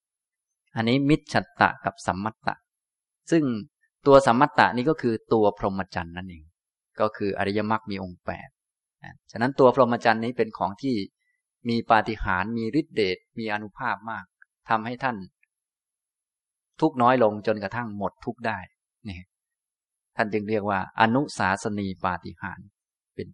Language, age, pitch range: Thai, 20-39, 95-120 Hz